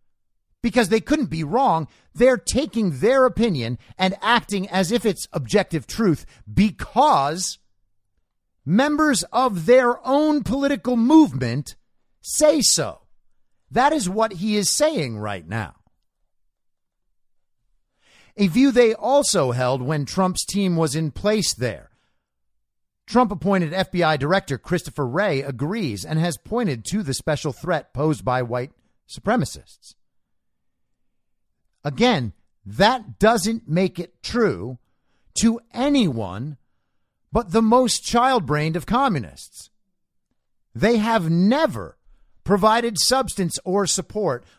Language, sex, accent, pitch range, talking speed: English, male, American, 145-235 Hz, 115 wpm